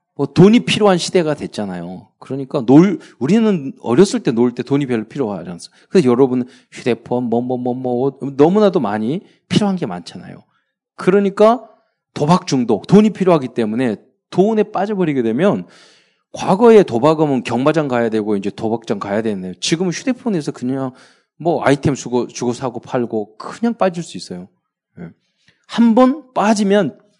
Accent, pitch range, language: native, 120-190 Hz, Korean